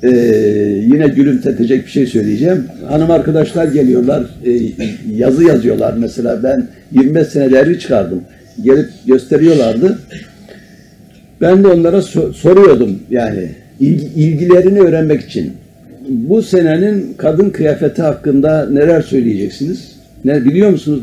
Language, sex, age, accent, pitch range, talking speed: Turkish, male, 60-79, native, 125-180 Hz, 110 wpm